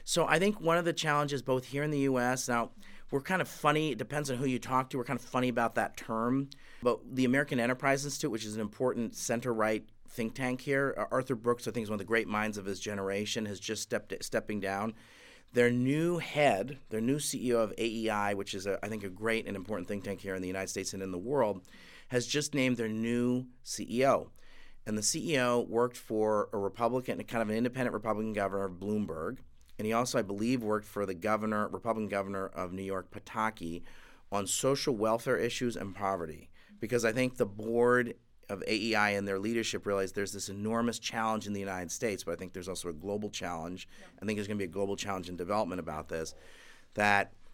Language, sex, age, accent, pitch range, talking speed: English, male, 30-49, American, 100-125 Hz, 215 wpm